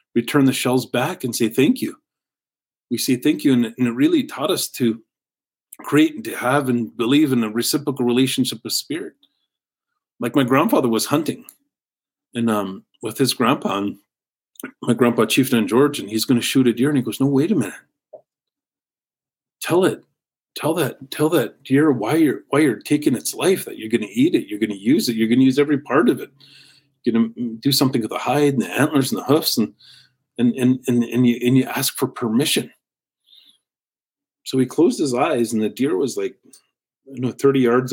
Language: English